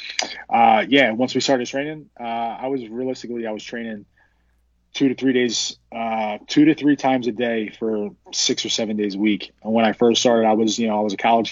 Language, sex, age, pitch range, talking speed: English, male, 20-39, 110-125 Hz, 230 wpm